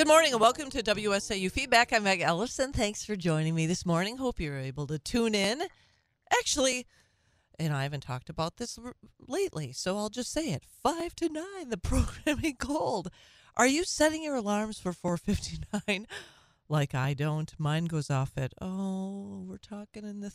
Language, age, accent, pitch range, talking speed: English, 40-59, American, 150-215 Hz, 175 wpm